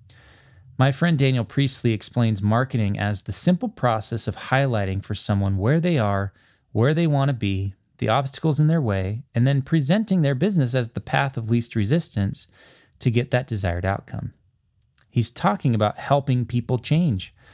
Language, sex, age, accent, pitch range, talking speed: English, male, 20-39, American, 105-140 Hz, 170 wpm